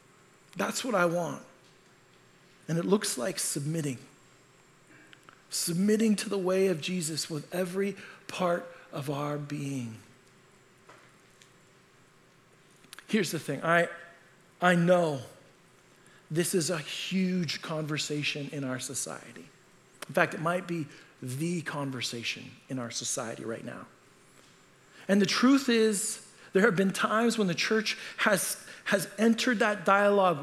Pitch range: 145-200 Hz